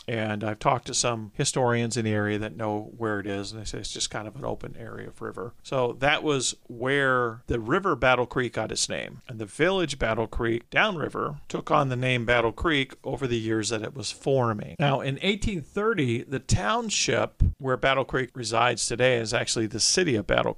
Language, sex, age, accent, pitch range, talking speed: English, male, 40-59, American, 110-135 Hz, 210 wpm